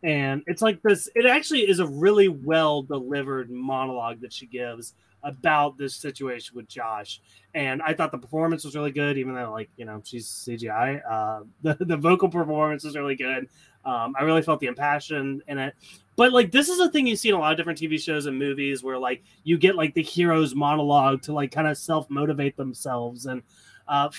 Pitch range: 140-200 Hz